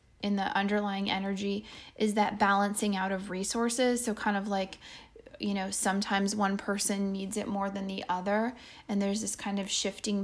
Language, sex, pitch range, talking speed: English, female, 195-220 Hz, 180 wpm